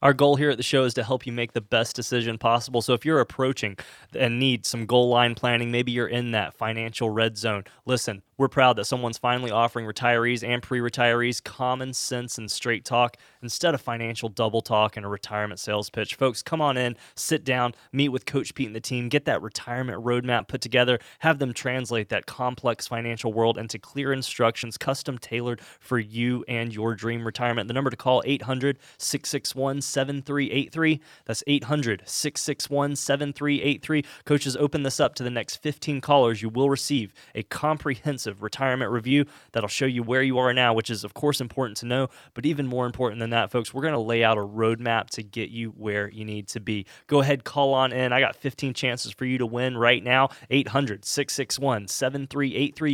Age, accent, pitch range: 20-39, American, 115-140 Hz